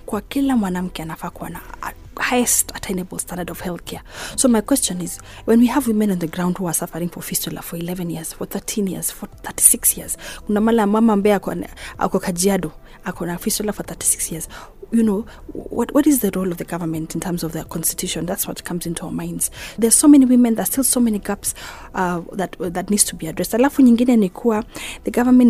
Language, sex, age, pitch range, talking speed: Swahili, female, 30-49, 180-225 Hz, 170 wpm